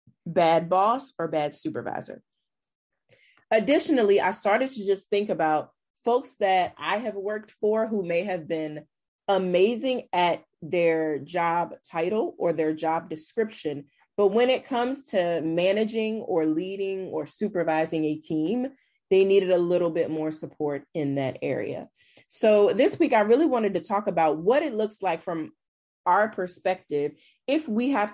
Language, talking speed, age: English, 155 wpm, 30-49